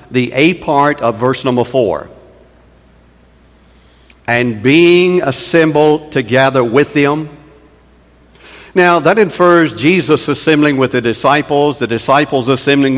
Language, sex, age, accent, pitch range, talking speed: English, male, 60-79, American, 120-155 Hz, 110 wpm